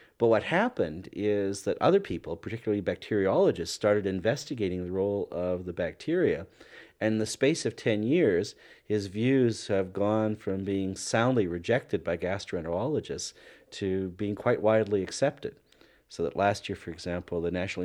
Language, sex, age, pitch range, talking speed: English, male, 40-59, 95-115 Hz, 155 wpm